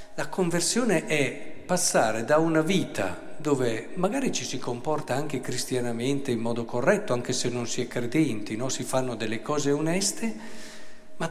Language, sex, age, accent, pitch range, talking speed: Italian, male, 50-69, native, 125-210 Hz, 155 wpm